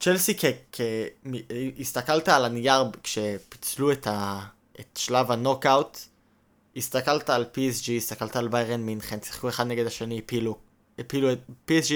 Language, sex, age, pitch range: Hebrew, male, 20-39, 120-145 Hz